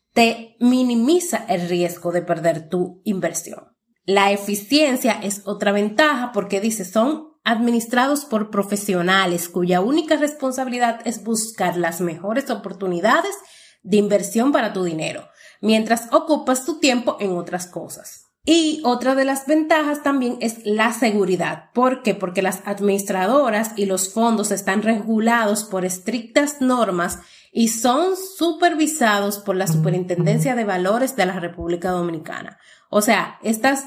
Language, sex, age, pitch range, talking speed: Spanish, female, 30-49, 200-250 Hz, 135 wpm